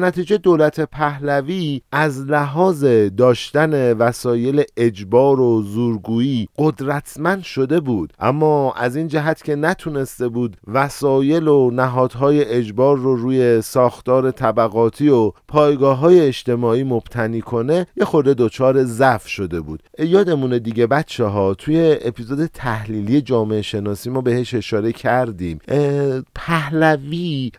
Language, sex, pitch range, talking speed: Persian, male, 115-145 Hz, 120 wpm